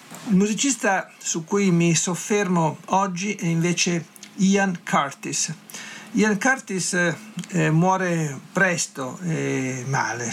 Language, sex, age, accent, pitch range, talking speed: Italian, male, 50-69, native, 150-185 Hz, 105 wpm